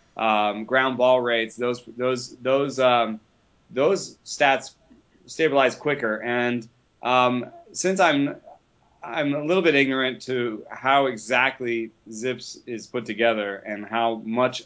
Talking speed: 135 wpm